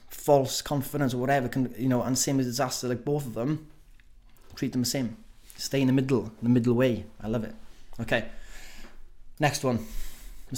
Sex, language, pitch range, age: male, English, 115-145 Hz, 20-39